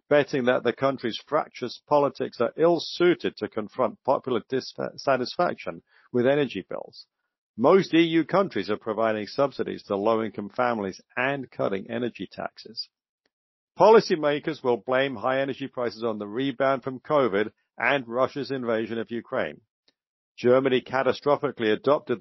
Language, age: English, 60-79